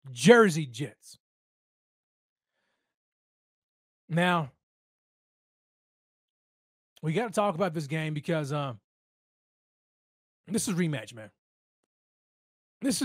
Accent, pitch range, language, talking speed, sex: American, 145-200 Hz, English, 80 wpm, male